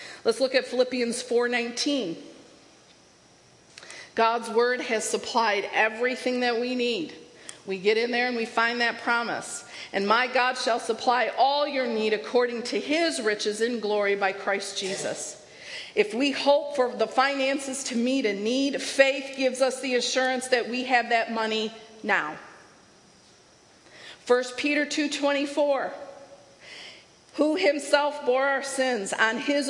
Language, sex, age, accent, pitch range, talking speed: English, female, 50-69, American, 210-275 Hz, 140 wpm